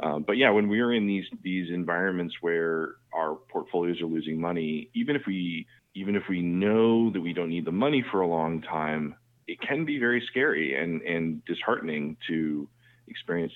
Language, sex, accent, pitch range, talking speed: English, male, American, 80-110 Hz, 190 wpm